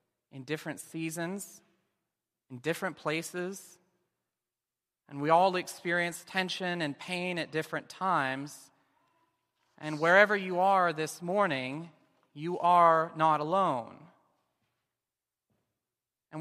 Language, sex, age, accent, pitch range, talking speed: English, male, 30-49, American, 145-190 Hz, 100 wpm